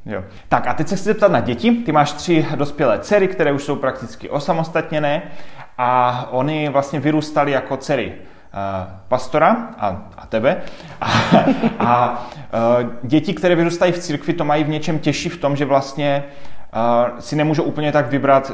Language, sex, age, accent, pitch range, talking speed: Czech, male, 30-49, native, 125-150 Hz, 160 wpm